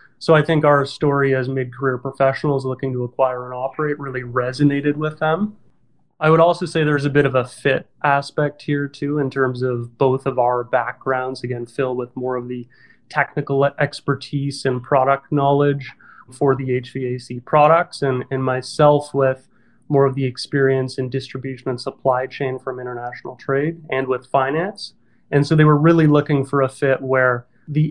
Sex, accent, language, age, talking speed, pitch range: male, American, English, 30-49, 175 wpm, 130-145 Hz